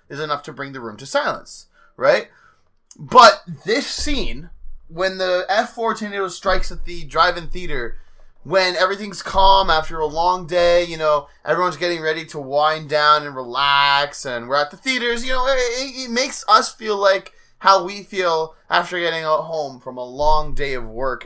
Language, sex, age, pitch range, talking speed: English, male, 20-39, 145-200 Hz, 185 wpm